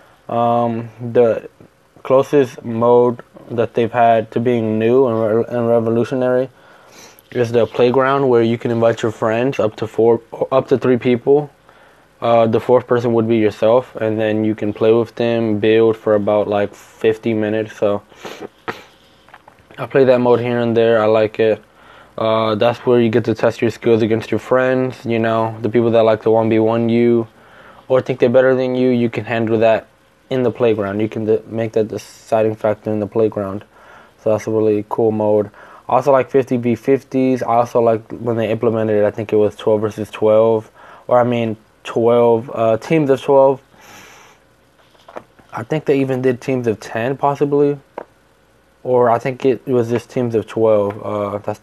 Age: 20-39